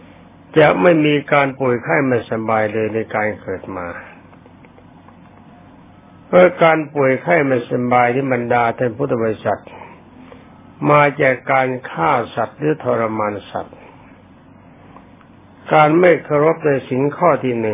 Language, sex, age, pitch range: Thai, male, 60-79, 115-145 Hz